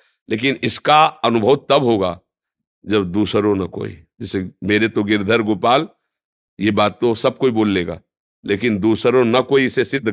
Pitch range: 100-125 Hz